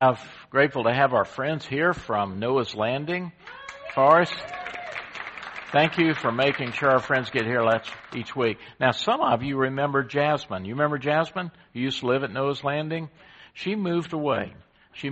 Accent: American